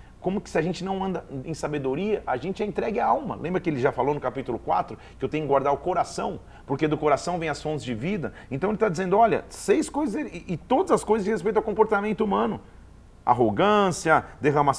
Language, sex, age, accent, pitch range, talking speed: Portuguese, male, 40-59, Brazilian, 140-180 Hz, 225 wpm